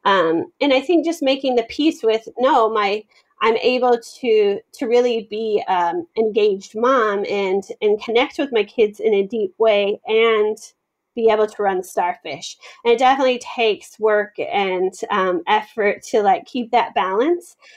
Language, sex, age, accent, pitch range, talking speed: English, female, 30-49, American, 200-245 Hz, 165 wpm